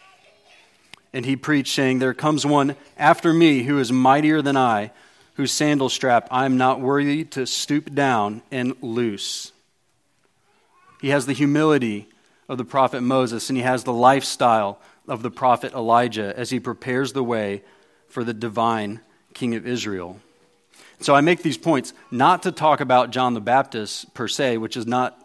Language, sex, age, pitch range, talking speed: English, male, 40-59, 120-145 Hz, 170 wpm